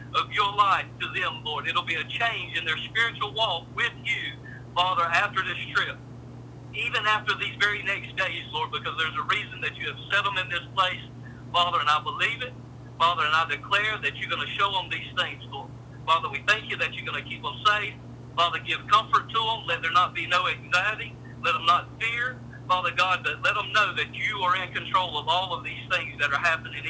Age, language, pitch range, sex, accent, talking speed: 50-69, English, 125-190 Hz, male, American, 230 wpm